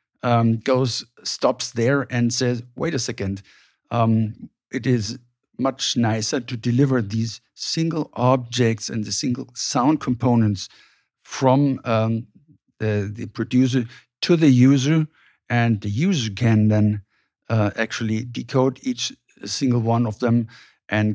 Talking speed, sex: 130 wpm, male